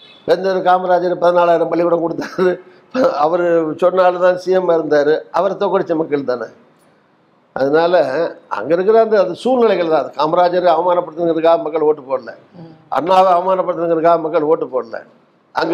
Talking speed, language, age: 55 wpm, Tamil, 60-79